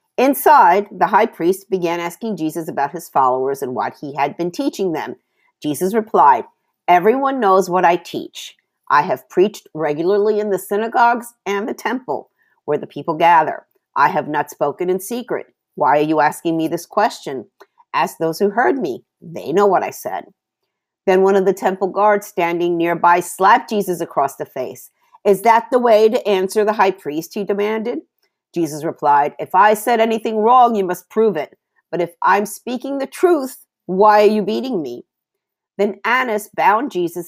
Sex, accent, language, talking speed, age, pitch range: female, American, English, 180 wpm, 50-69, 165-225 Hz